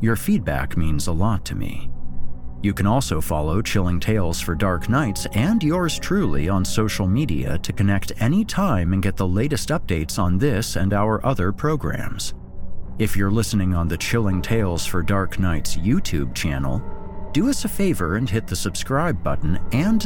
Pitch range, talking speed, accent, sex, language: 85-120 Hz, 175 wpm, American, male, English